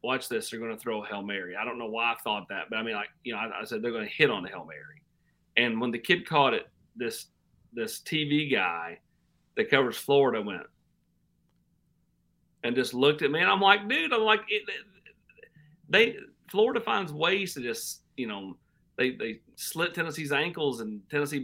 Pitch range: 115-155 Hz